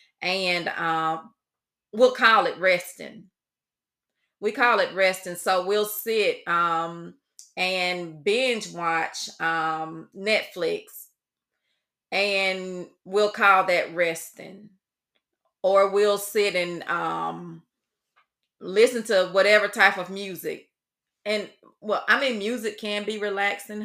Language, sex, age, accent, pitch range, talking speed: English, female, 30-49, American, 180-255 Hz, 110 wpm